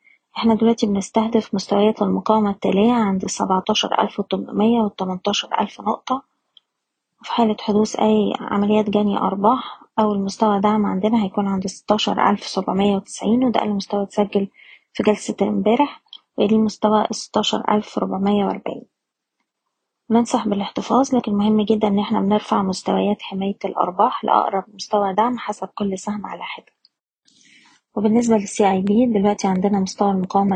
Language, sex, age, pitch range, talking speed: Arabic, female, 20-39, 200-220 Hz, 125 wpm